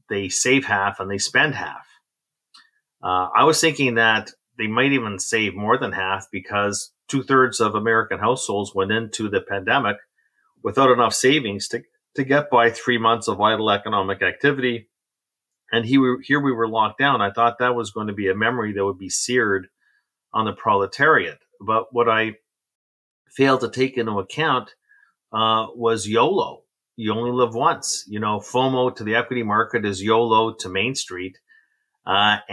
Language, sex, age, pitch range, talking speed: English, male, 40-59, 100-125 Hz, 170 wpm